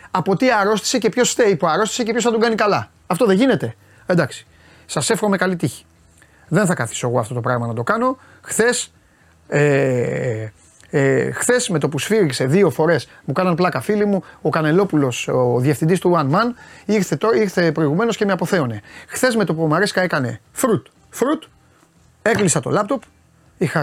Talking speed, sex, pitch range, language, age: 175 wpm, male, 135-200 Hz, Greek, 30-49